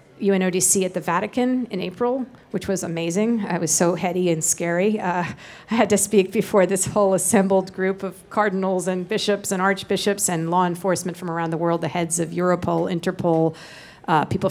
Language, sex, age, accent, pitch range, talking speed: English, female, 40-59, American, 175-205 Hz, 185 wpm